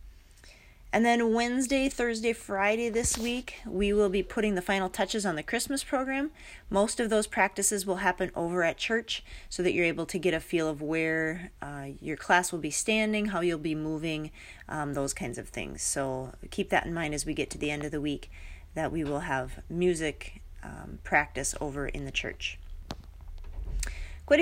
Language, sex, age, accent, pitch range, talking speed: English, female, 30-49, American, 150-220 Hz, 190 wpm